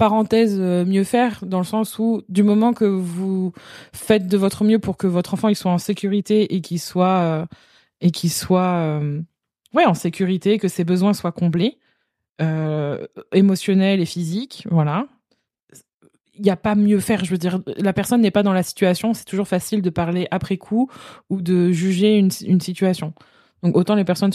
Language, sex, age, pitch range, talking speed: French, female, 20-39, 180-220 Hz, 190 wpm